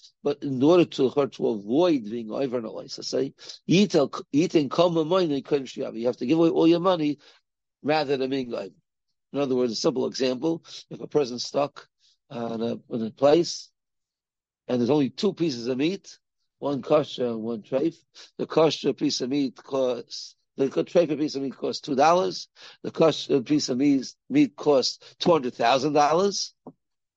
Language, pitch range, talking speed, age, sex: English, 130-160 Hz, 170 wpm, 60-79, male